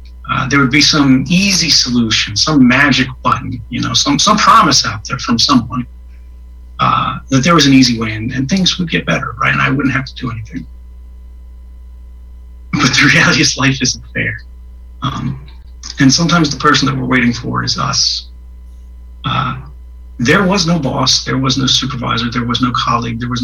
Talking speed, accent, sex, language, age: 185 wpm, American, male, English, 40-59